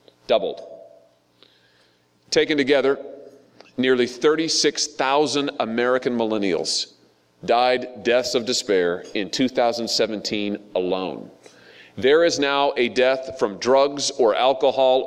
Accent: American